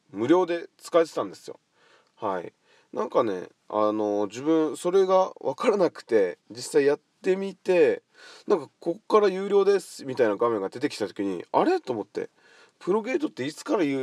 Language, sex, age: Japanese, male, 20-39